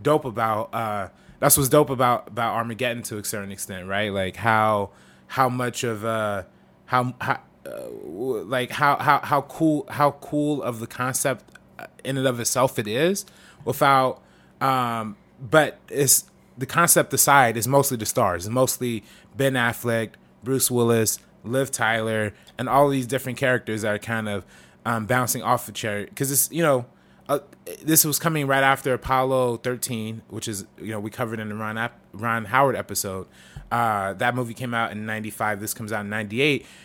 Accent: American